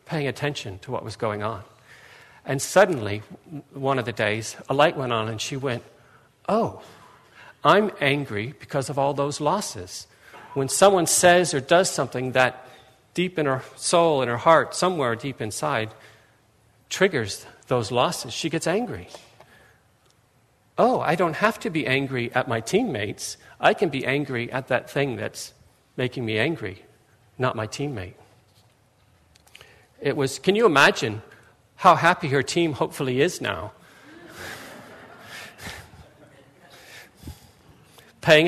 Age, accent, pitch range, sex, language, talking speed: 50-69, American, 115-160 Hz, male, English, 135 wpm